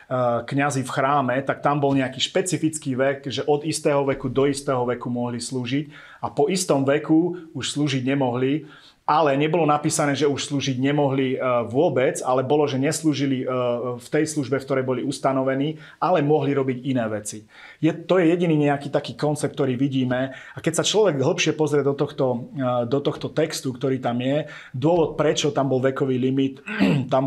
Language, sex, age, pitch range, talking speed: Slovak, male, 30-49, 125-145 Hz, 175 wpm